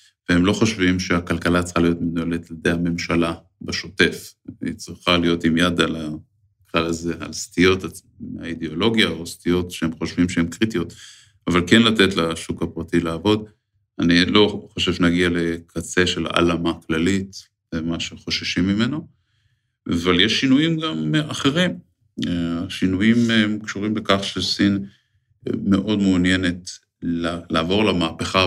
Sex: male